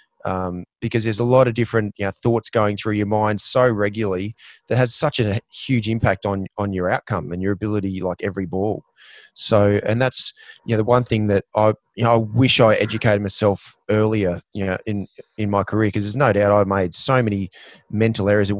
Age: 20-39